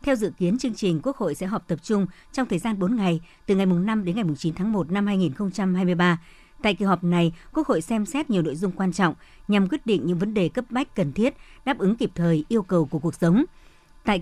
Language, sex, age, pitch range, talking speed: Vietnamese, male, 60-79, 175-215 Hz, 260 wpm